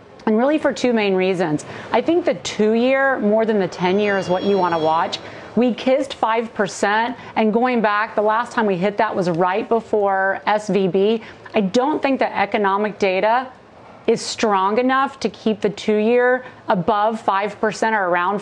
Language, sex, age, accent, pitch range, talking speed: English, female, 40-59, American, 200-240 Hz, 175 wpm